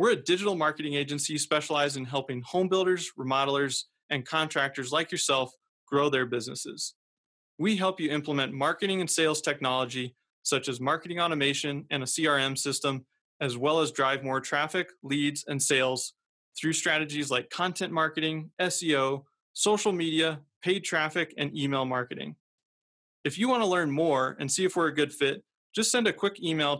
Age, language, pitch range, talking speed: 20-39, English, 140-180 Hz, 165 wpm